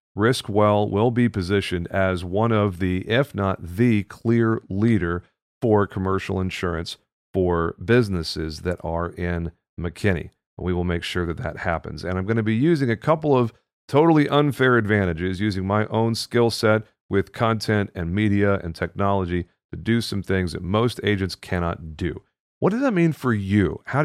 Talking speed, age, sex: 170 wpm, 40-59, male